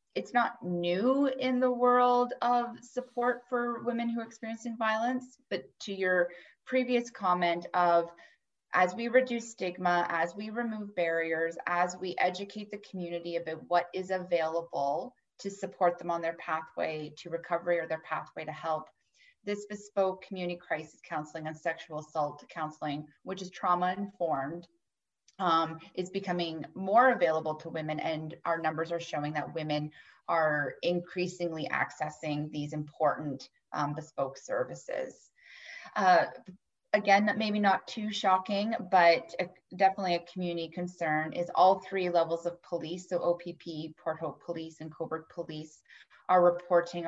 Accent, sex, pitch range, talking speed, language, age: American, female, 160-195 Hz, 140 wpm, English, 30-49